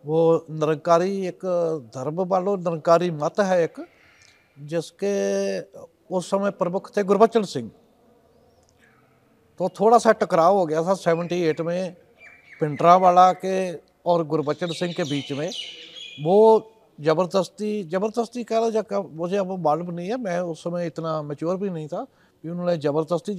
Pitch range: 165-205 Hz